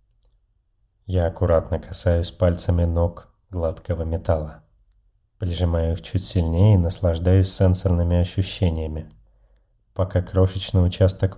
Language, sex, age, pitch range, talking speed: Russian, male, 30-49, 90-105 Hz, 95 wpm